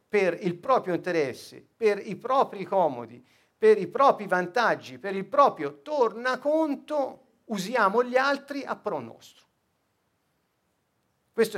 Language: Italian